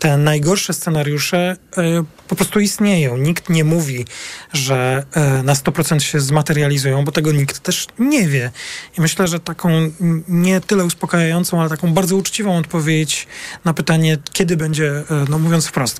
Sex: male